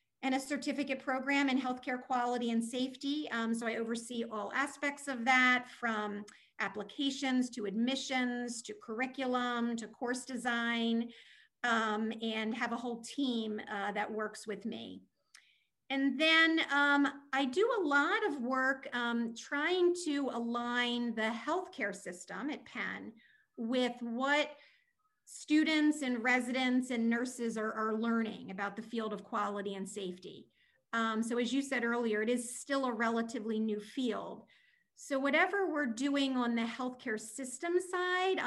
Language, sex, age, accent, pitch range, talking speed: English, female, 40-59, American, 220-270 Hz, 145 wpm